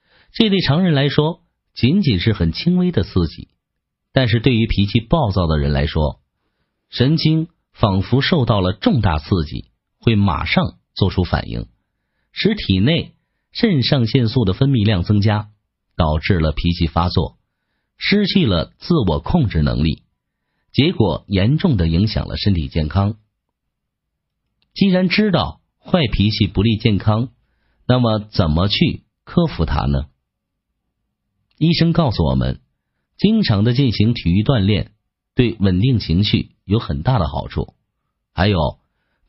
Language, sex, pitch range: Chinese, male, 90-140 Hz